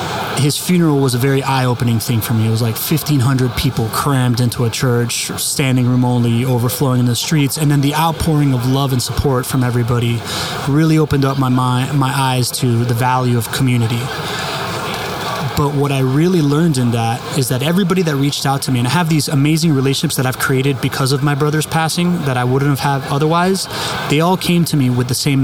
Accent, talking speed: American, 210 wpm